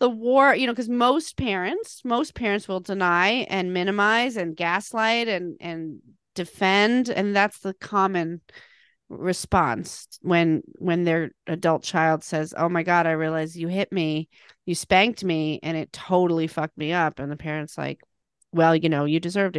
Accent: American